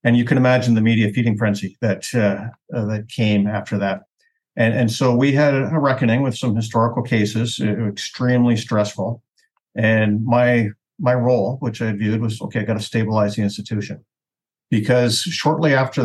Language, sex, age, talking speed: English, male, 50-69, 175 wpm